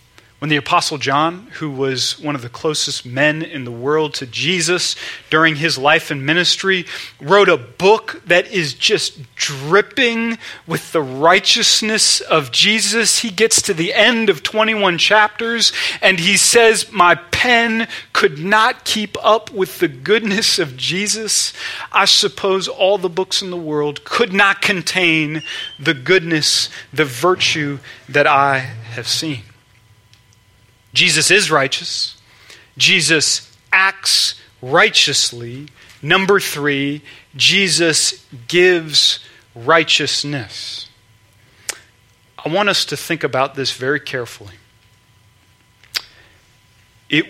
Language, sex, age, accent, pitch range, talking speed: English, male, 30-49, American, 125-185 Hz, 120 wpm